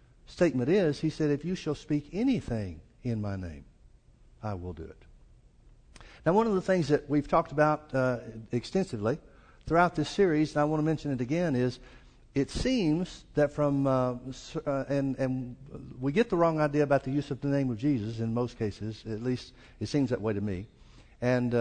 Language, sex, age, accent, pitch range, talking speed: English, male, 60-79, American, 115-145 Hz, 195 wpm